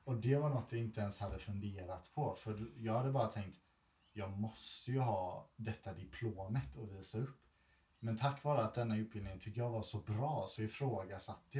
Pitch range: 100-125 Hz